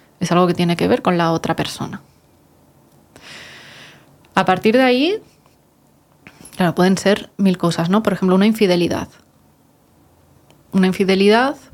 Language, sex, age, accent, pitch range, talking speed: Spanish, female, 20-39, Spanish, 185-220 Hz, 135 wpm